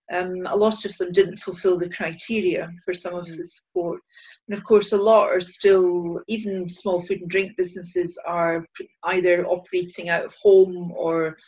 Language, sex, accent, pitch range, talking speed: English, female, British, 175-210 Hz, 180 wpm